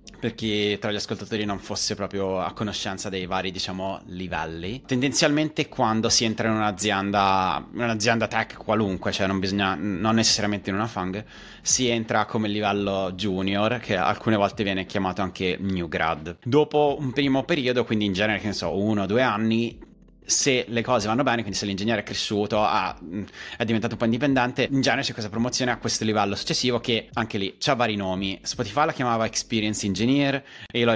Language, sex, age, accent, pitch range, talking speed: Italian, male, 30-49, native, 100-125 Hz, 190 wpm